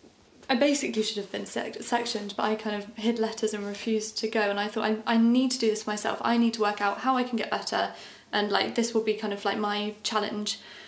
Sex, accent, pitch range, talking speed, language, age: female, British, 210-235 Hz, 260 wpm, English, 20-39